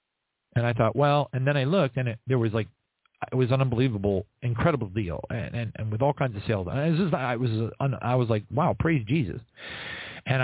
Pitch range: 105-135 Hz